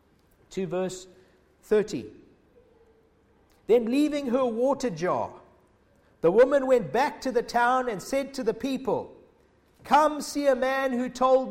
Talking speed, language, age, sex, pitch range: 135 wpm, English, 50-69, male, 185-260 Hz